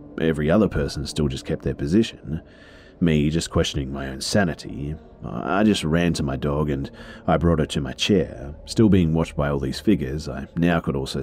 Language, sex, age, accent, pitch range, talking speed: English, male, 40-59, Australian, 70-90 Hz, 205 wpm